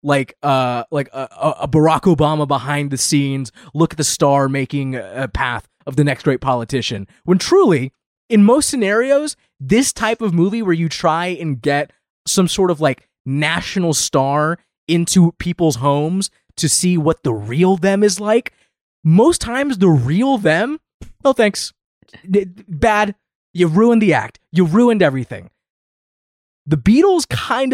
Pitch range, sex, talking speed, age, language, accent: 140-205 Hz, male, 155 wpm, 20-39, English, American